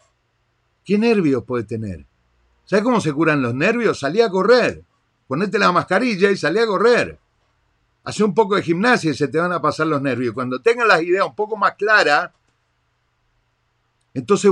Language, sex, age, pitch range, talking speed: Spanish, male, 50-69, 125-195 Hz, 175 wpm